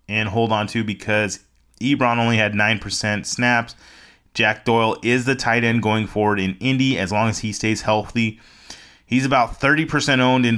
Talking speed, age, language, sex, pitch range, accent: 175 wpm, 30-49, English, male, 105-125 Hz, American